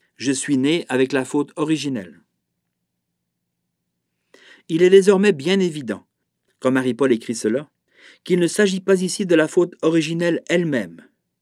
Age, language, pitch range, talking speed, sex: 50-69, French, 130-185 Hz, 135 wpm, male